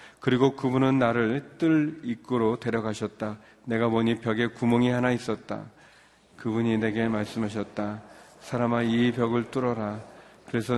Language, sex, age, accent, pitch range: Korean, male, 40-59, native, 110-125 Hz